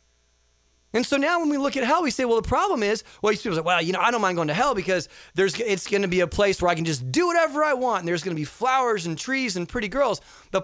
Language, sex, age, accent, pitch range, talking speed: English, male, 30-49, American, 190-285 Hz, 295 wpm